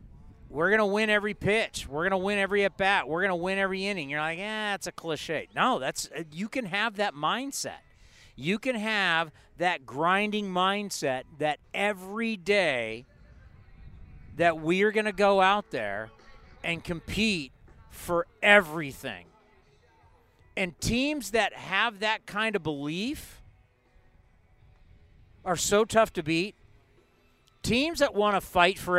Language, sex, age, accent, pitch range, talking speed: English, male, 40-59, American, 150-205 Hz, 145 wpm